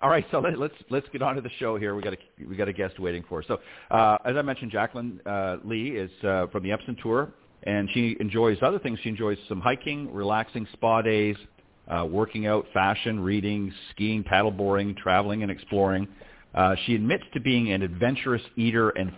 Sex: male